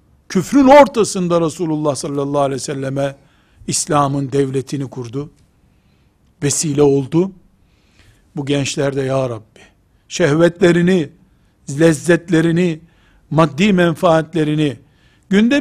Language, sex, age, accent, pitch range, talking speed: Turkish, male, 60-79, native, 135-175 Hz, 80 wpm